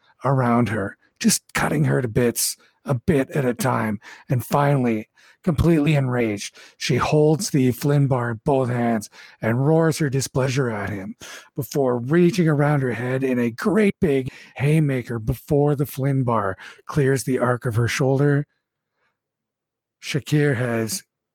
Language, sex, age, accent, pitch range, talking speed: English, male, 50-69, American, 120-150 Hz, 145 wpm